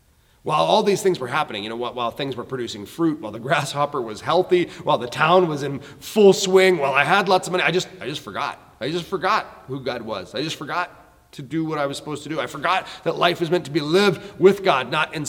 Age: 30-49